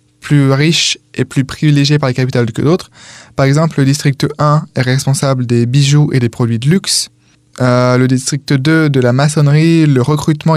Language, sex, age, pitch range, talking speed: French, male, 20-39, 130-150 Hz, 185 wpm